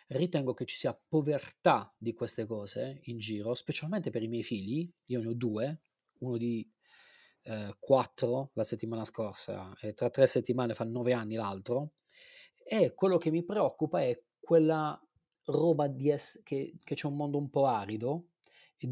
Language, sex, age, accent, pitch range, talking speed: Italian, male, 30-49, native, 120-155 Hz, 170 wpm